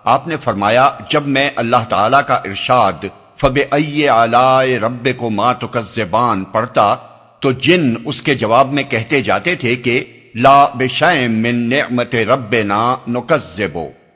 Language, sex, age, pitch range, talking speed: Urdu, male, 50-69, 110-140 Hz, 125 wpm